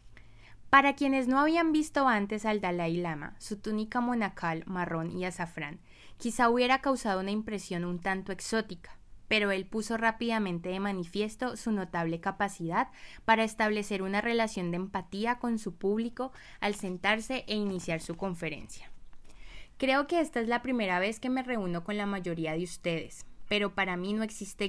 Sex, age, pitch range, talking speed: female, 20-39, 180-225 Hz, 165 wpm